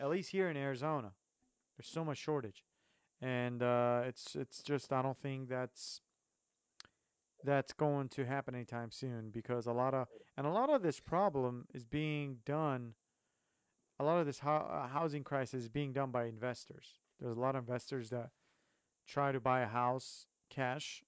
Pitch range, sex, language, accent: 125-150 Hz, male, English, American